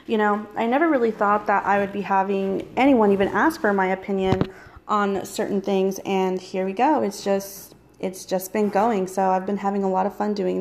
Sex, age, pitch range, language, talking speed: female, 30-49, 195-235 Hz, English, 220 wpm